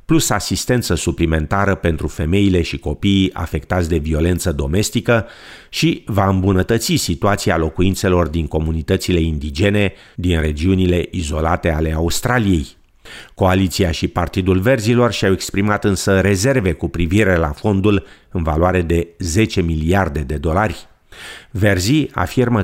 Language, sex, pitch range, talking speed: Romanian, male, 85-110 Hz, 120 wpm